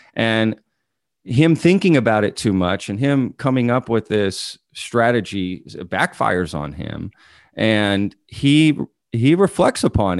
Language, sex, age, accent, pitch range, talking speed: English, male, 40-59, American, 95-115 Hz, 130 wpm